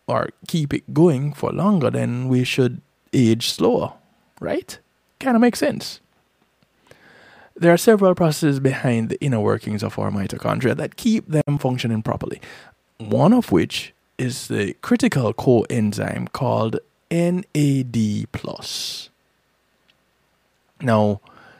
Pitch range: 115-160 Hz